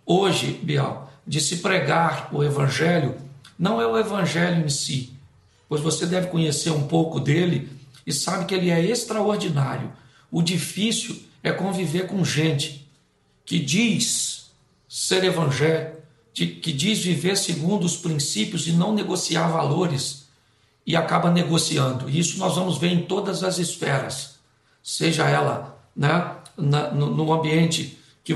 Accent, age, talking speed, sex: Brazilian, 60-79, 140 wpm, male